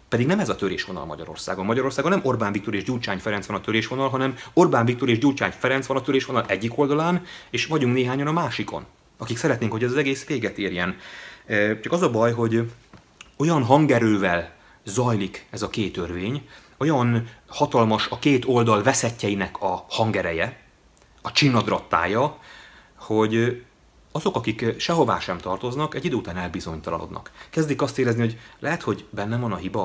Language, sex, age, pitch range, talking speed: Hungarian, male, 30-49, 110-140 Hz, 165 wpm